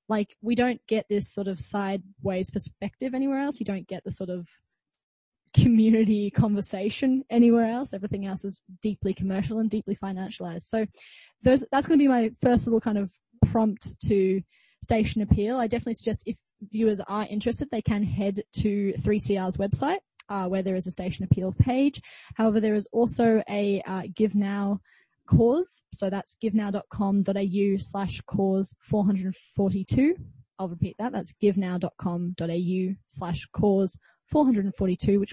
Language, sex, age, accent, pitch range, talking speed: English, female, 10-29, Australian, 185-225 Hz, 145 wpm